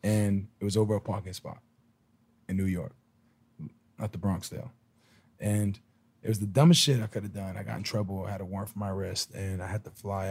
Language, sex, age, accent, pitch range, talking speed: English, male, 20-39, American, 95-115 Hz, 225 wpm